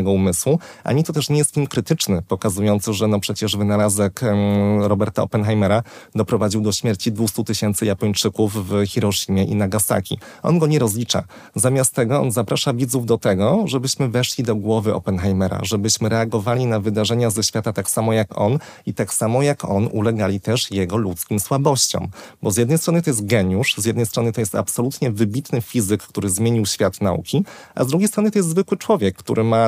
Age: 30-49